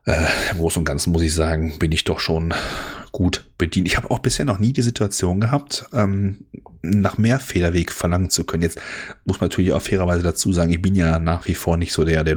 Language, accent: German, German